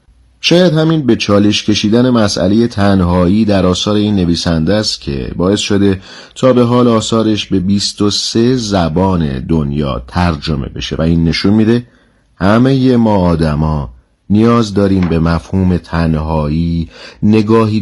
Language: Persian